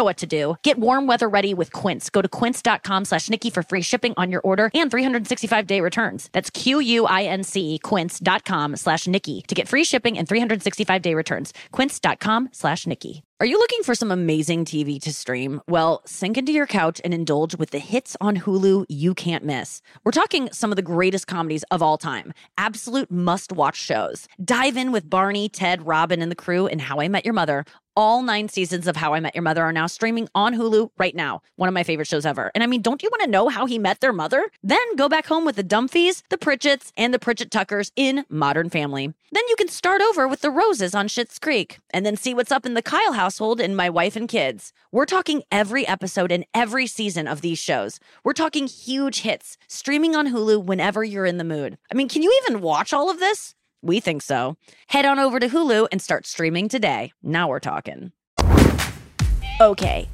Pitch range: 170-250 Hz